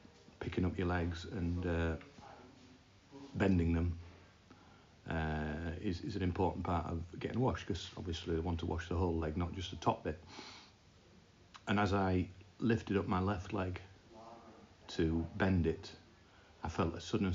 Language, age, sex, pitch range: English, 40-59, male, 85-100 Hz